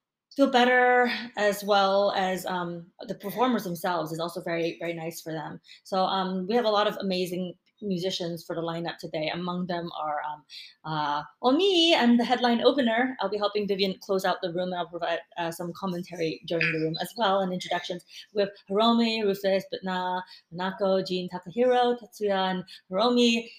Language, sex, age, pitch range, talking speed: English, female, 20-39, 180-225 Hz, 175 wpm